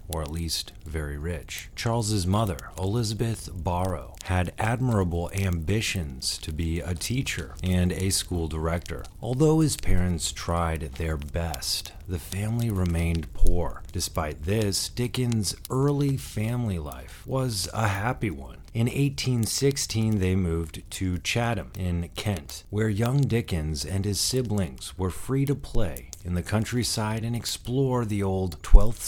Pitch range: 85-110 Hz